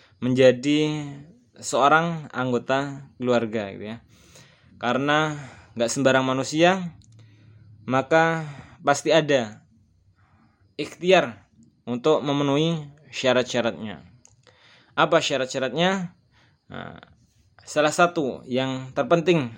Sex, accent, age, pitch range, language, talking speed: male, native, 20-39, 120-150 Hz, Indonesian, 70 wpm